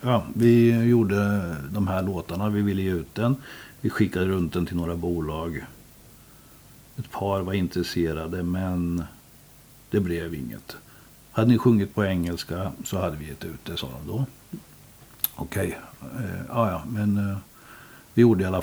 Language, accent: Swedish, native